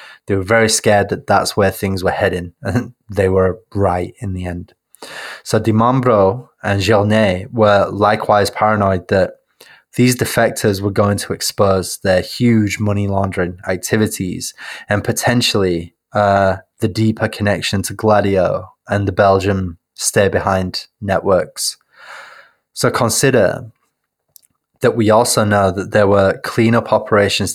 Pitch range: 95-110 Hz